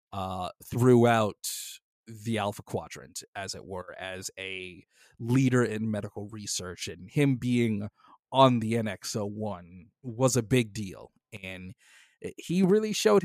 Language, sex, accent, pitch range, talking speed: English, male, American, 115-160 Hz, 125 wpm